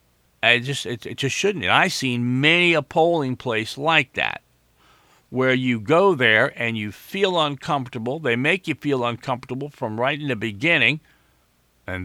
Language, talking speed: English, 155 wpm